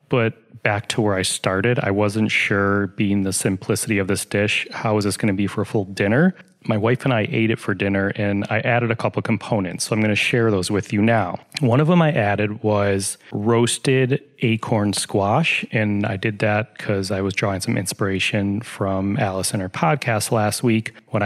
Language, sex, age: English, male, 30-49